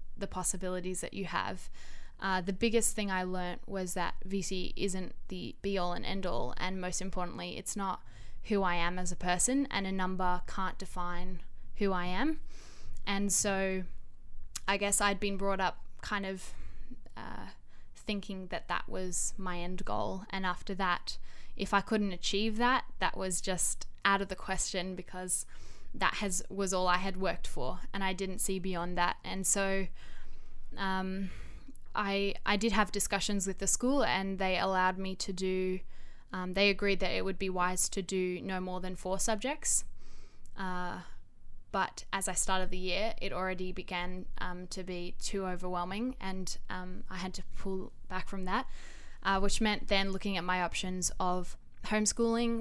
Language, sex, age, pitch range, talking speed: English, female, 10-29, 180-195 Hz, 175 wpm